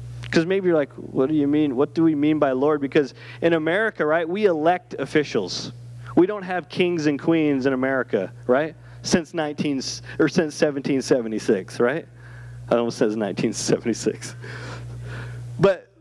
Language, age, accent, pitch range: English, 30-49, American, 125-190 Hz